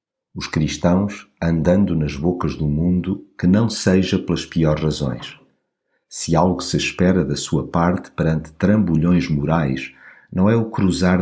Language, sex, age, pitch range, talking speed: Portuguese, male, 50-69, 80-95 Hz, 145 wpm